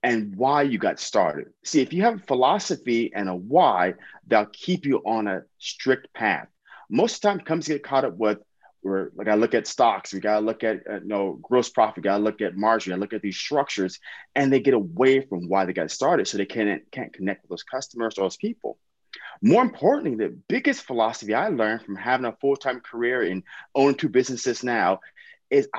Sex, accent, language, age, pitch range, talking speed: male, American, English, 30-49, 105-140 Hz, 215 wpm